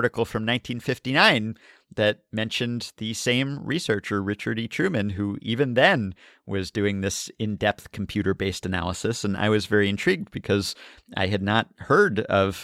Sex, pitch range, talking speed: male, 100-115 Hz, 150 wpm